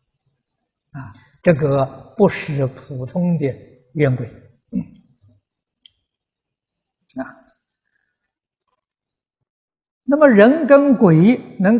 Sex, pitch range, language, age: male, 130-180 Hz, Chinese, 60-79